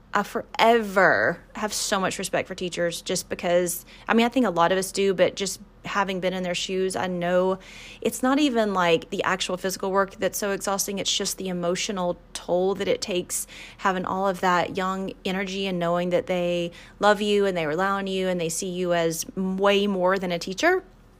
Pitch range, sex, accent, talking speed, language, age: 180-220 Hz, female, American, 210 wpm, English, 30-49